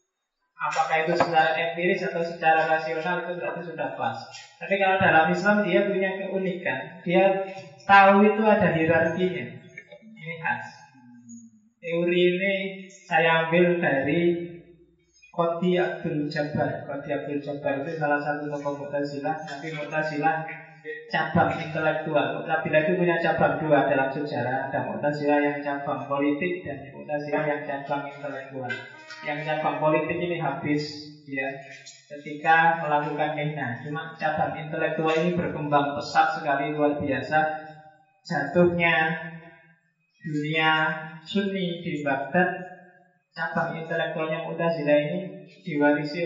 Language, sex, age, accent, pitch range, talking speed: Indonesian, male, 20-39, native, 145-175 Hz, 120 wpm